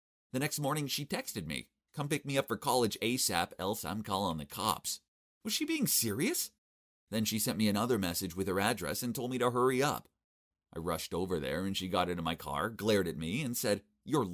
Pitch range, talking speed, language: 90-135 Hz, 220 wpm, English